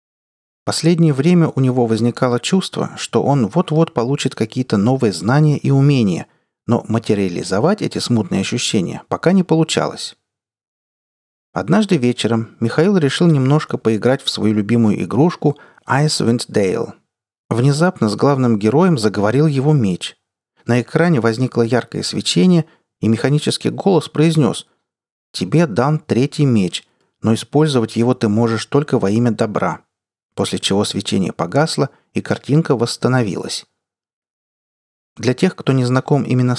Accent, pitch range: native, 110-155 Hz